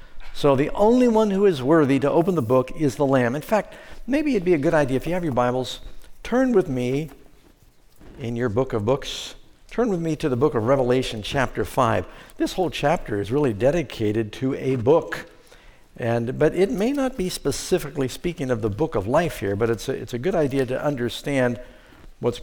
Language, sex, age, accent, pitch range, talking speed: English, male, 60-79, American, 125-155 Hz, 210 wpm